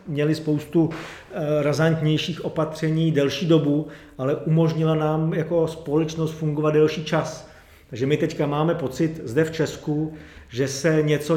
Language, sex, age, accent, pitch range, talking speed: Czech, male, 40-59, native, 135-160 Hz, 130 wpm